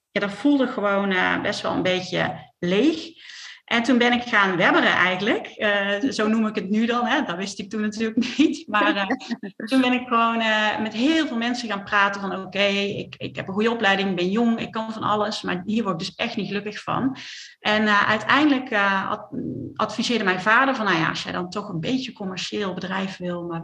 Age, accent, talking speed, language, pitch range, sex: 40-59, Dutch, 225 wpm, Dutch, 190-240 Hz, female